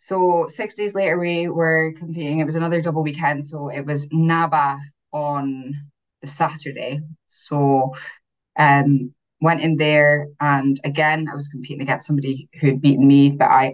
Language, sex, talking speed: English, female, 160 wpm